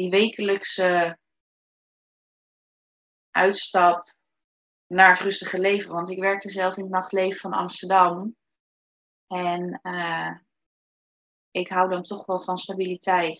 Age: 20-39